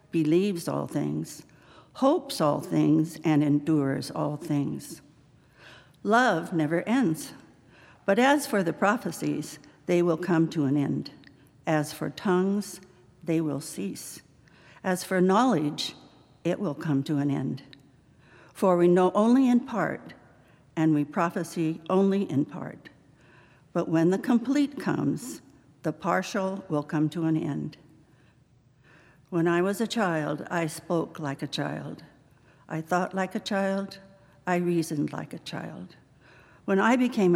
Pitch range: 145-185 Hz